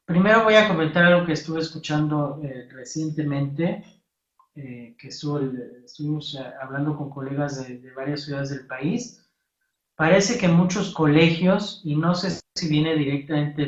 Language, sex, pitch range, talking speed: Spanish, male, 140-175 Hz, 140 wpm